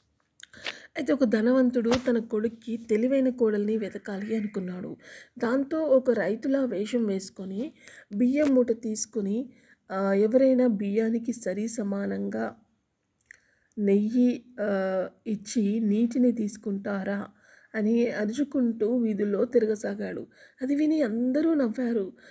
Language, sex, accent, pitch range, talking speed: Telugu, female, native, 205-255 Hz, 90 wpm